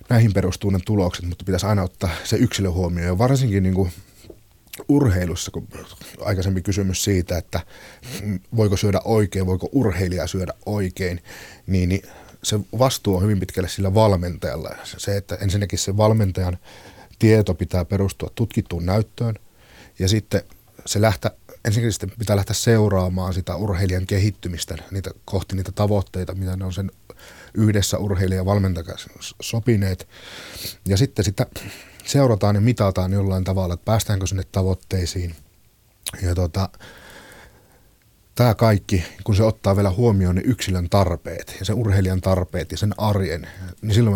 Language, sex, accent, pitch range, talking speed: Finnish, male, native, 95-105 Hz, 135 wpm